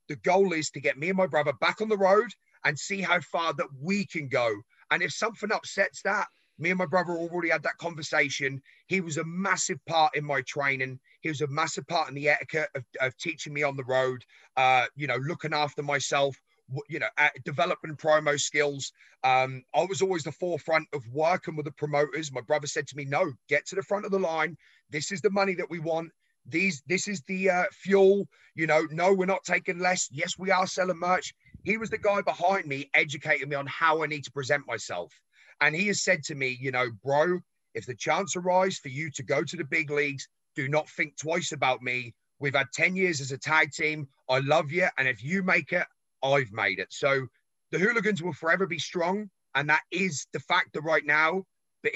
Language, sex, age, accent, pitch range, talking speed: English, male, 30-49, British, 140-180 Hz, 225 wpm